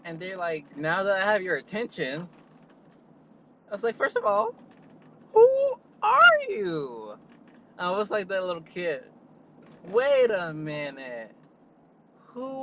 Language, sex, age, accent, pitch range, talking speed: English, male, 20-39, American, 155-245 Hz, 135 wpm